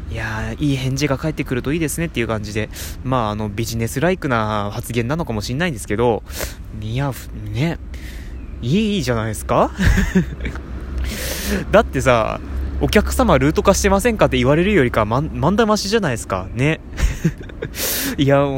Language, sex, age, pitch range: Japanese, male, 20-39, 105-150 Hz